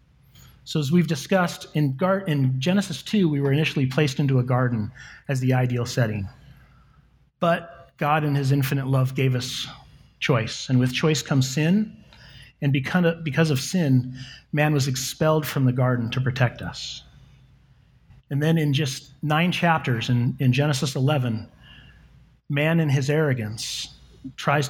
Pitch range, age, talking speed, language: 130-150 Hz, 40-59, 145 wpm, English